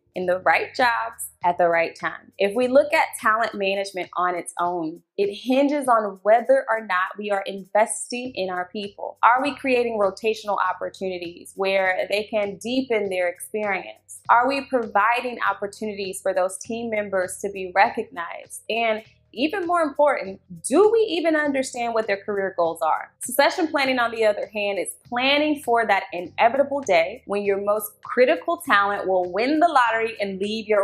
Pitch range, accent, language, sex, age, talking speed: 190-250 Hz, American, English, female, 20-39, 170 wpm